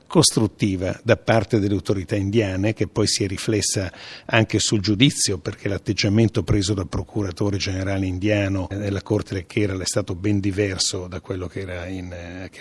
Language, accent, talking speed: Italian, native, 150 wpm